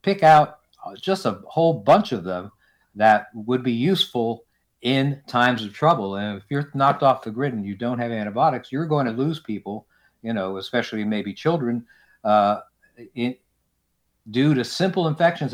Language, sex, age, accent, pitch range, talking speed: English, male, 50-69, American, 100-130 Hz, 165 wpm